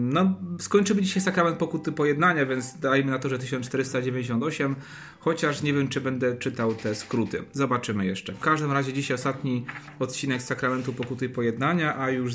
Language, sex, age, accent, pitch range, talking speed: Polish, male, 30-49, native, 115-150 Hz, 170 wpm